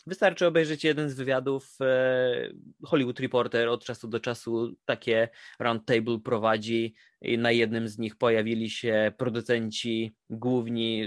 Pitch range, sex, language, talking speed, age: 125-155 Hz, male, Polish, 125 wpm, 20-39